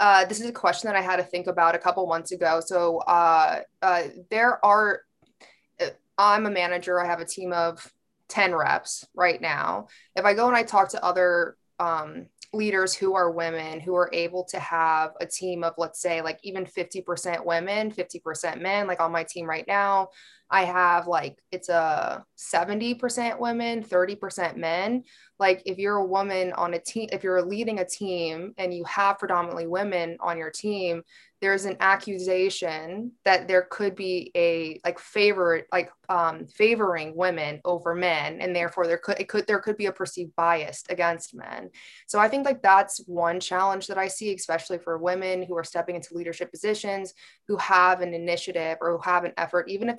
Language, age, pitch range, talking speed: English, 20-39, 170-195 Hz, 185 wpm